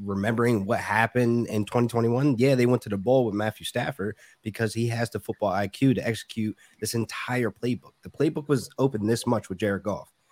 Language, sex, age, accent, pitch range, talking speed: English, male, 20-39, American, 105-135 Hz, 200 wpm